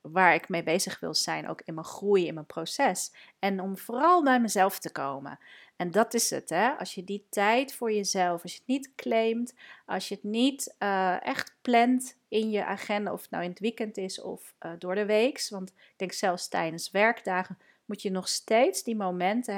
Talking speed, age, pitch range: 215 wpm, 40-59, 180-235 Hz